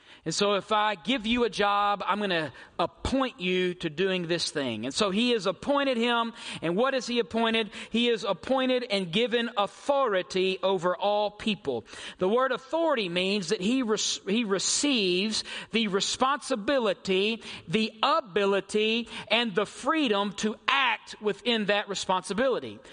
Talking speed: 150 wpm